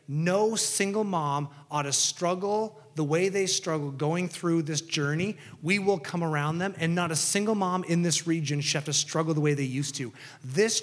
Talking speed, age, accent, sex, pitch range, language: 205 wpm, 30-49, American, male, 140-165 Hz, English